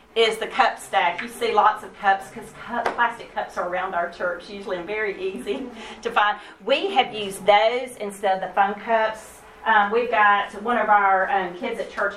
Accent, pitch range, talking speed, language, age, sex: American, 185-220 Hz, 200 wpm, English, 40-59, female